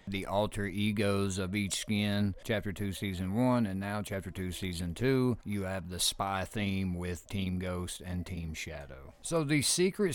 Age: 50-69